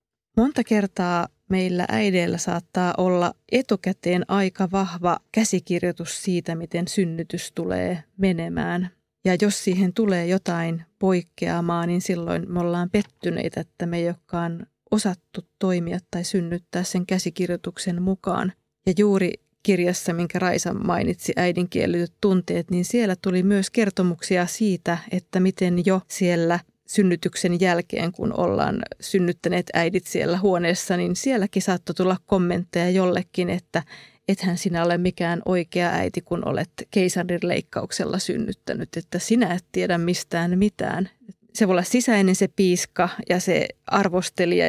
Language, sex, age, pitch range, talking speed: Finnish, female, 30-49, 175-195 Hz, 130 wpm